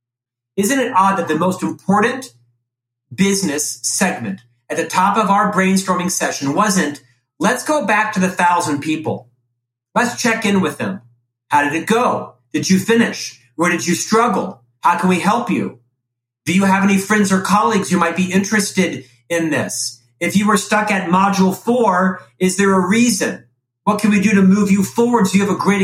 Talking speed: 190 wpm